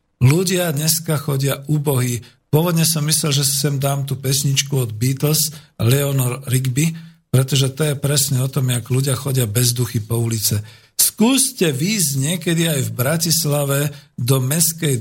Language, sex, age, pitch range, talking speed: Slovak, male, 50-69, 120-150 Hz, 150 wpm